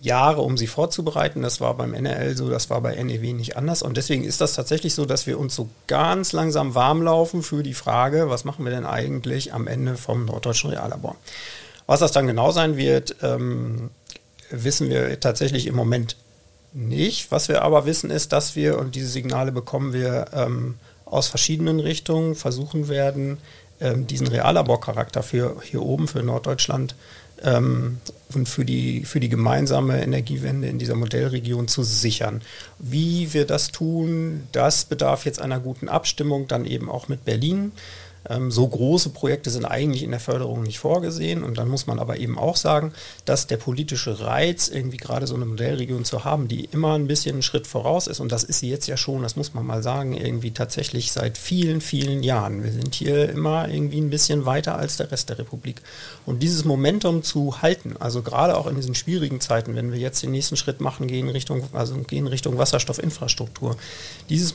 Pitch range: 120-150 Hz